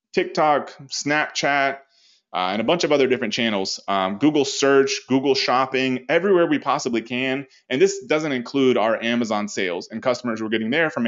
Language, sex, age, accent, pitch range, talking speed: English, male, 20-39, American, 120-160 Hz, 175 wpm